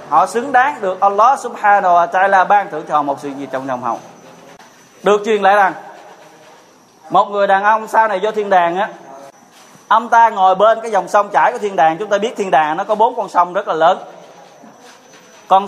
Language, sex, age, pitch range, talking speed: Vietnamese, male, 20-39, 160-205 Hz, 215 wpm